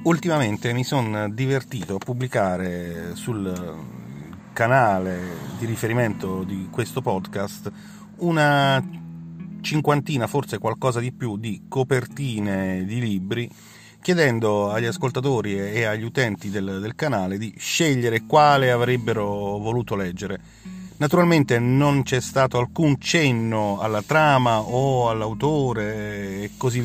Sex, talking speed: male, 110 wpm